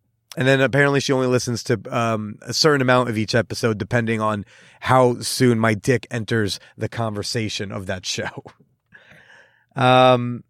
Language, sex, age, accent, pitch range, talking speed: English, male, 30-49, American, 120-155 Hz, 155 wpm